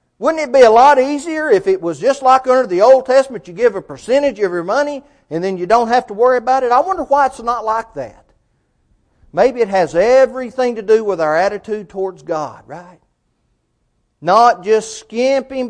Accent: American